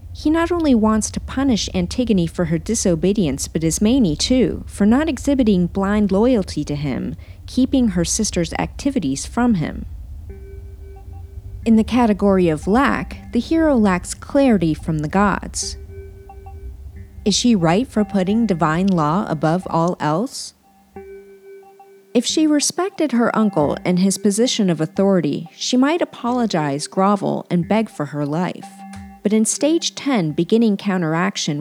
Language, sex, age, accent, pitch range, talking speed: English, female, 40-59, American, 160-235 Hz, 140 wpm